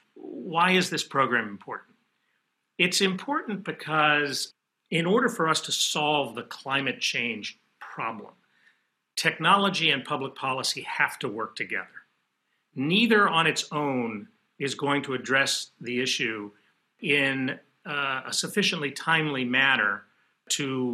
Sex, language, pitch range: male, English, 130-165 Hz